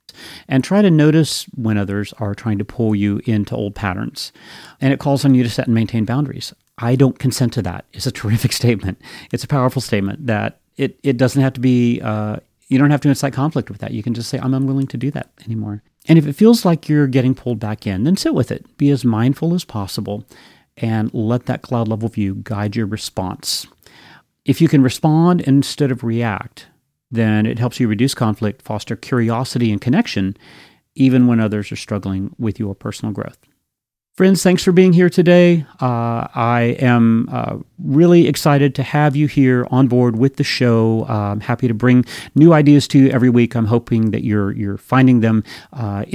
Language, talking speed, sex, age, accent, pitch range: English, 205 wpm, male, 40-59, American, 110-140 Hz